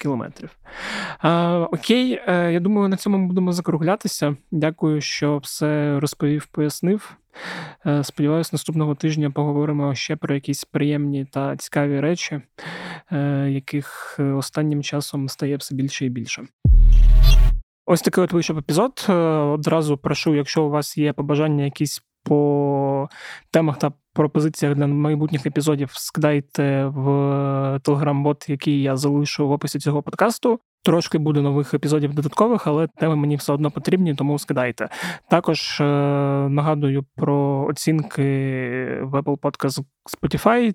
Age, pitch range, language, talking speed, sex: 20-39, 145-165 Hz, Ukrainian, 130 wpm, male